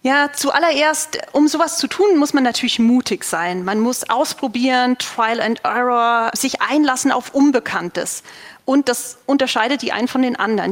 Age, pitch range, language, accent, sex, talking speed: 40-59, 225-280 Hz, German, German, female, 160 wpm